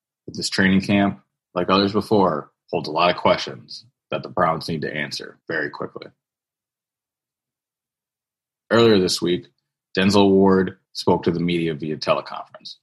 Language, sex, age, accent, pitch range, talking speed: English, male, 30-49, American, 85-100 Hz, 140 wpm